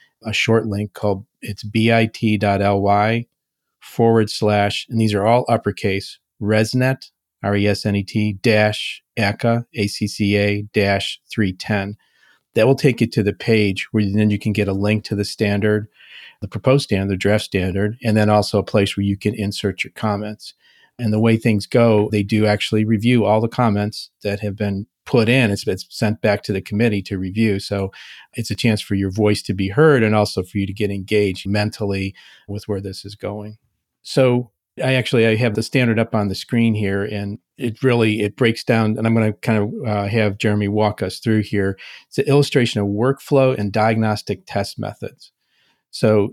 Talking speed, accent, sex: 185 wpm, American, male